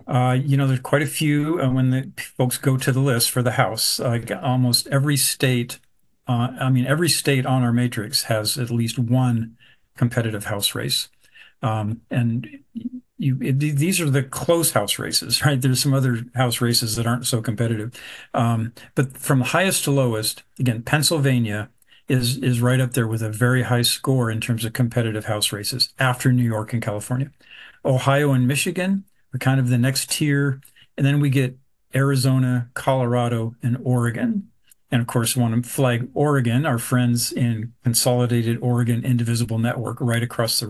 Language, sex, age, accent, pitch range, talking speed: English, male, 50-69, American, 120-135 Hz, 180 wpm